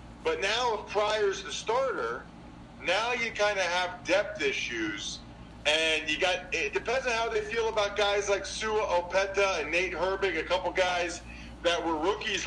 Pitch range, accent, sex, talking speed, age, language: 160-215 Hz, American, male, 175 wpm, 40-59, English